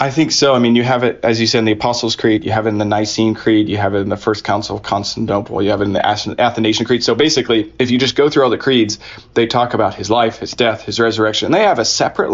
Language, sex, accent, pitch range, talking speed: English, male, American, 110-125 Hz, 300 wpm